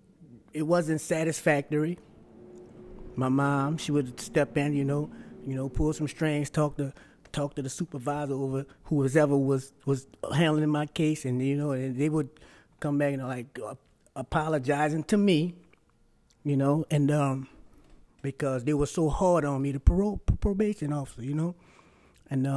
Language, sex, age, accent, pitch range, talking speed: English, male, 30-49, American, 130-155 Hz, 170 wpm